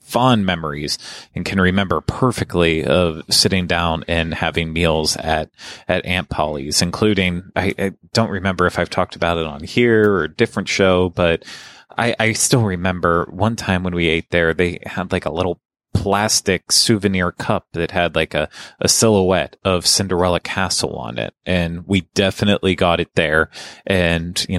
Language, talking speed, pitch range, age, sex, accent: English, 170 wpm, 85-100 Hz, 30-49, male, American